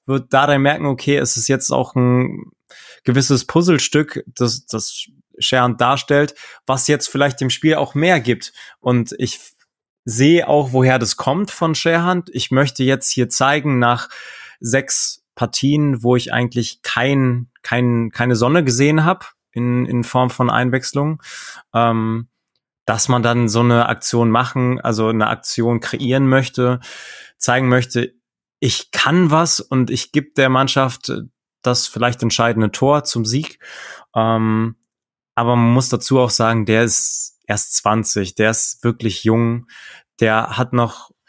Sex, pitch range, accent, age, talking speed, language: male, 120-135 Hz, German, 20-39, 150 wpm, German